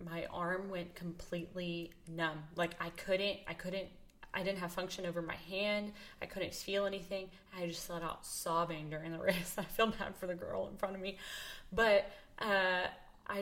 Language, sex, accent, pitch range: English, female, American, 175-200 Hz